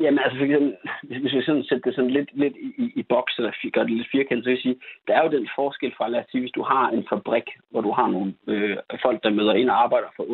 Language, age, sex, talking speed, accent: Danish, 30-49, male, 275 wpm, native